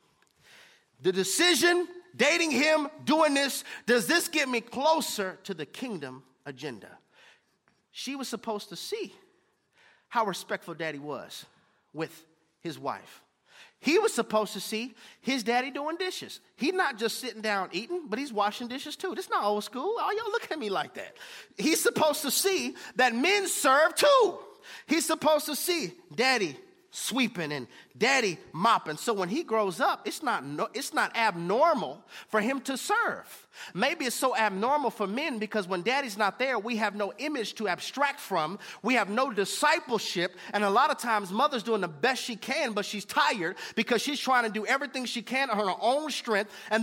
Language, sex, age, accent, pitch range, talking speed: English, male, 30-49, American, 205-300 Hz, 175 wpm